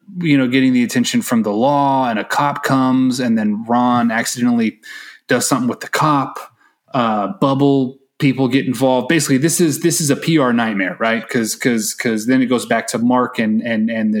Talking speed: 200 wpm